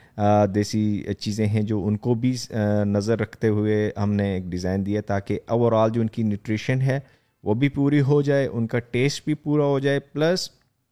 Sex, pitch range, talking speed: male, 100-120 Hz, 210 wpm